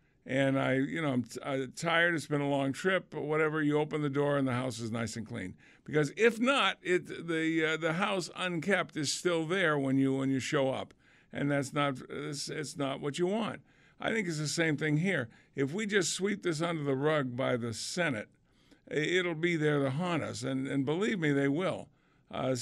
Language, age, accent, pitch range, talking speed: English, 50-69, American, 135-165 Hz, 225 wpm